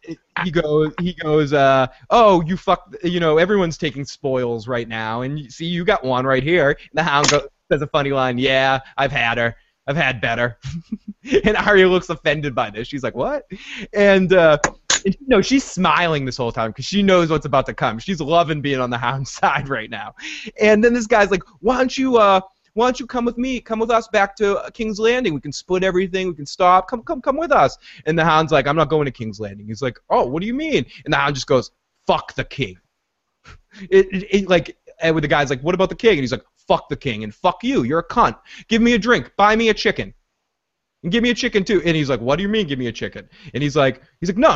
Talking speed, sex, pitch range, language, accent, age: 255 wpm, male, 140-215 Hz, English, American, 20-39